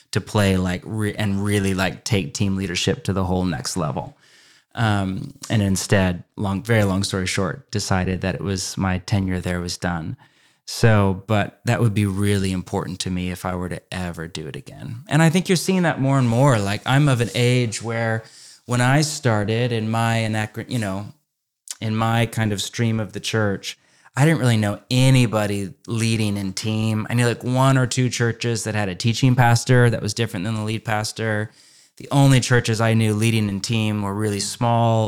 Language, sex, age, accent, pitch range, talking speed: English, male, 30-49, American, 100-120 Hz, 200 wpm